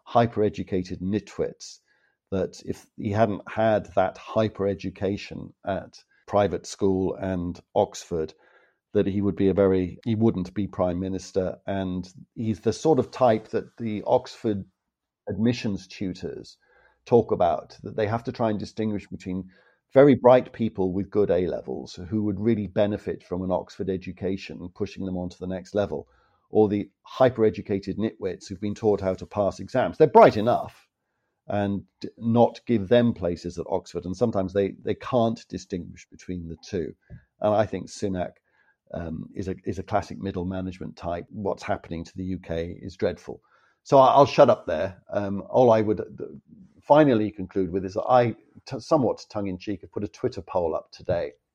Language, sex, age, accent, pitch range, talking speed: English, male, 40-59, British, 95-110 Hz, 165 wpm